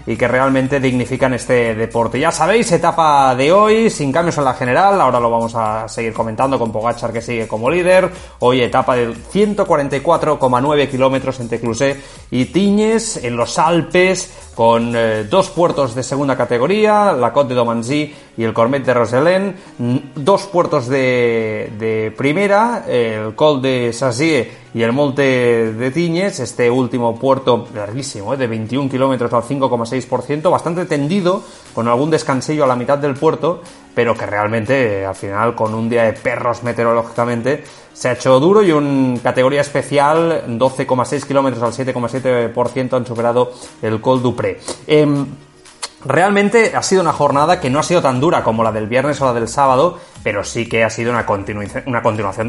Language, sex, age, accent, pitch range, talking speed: Spanish, male, 30-49, Spanish, 115-145 Hz, 170 wpm